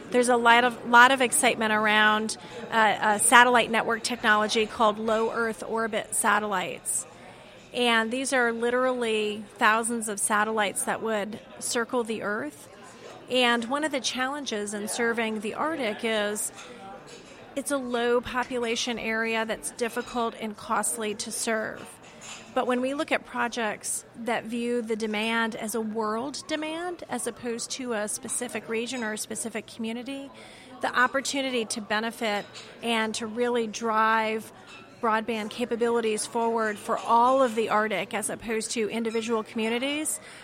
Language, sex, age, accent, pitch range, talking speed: English, female, 30-49, American, 220-245 Hz, 140 wpm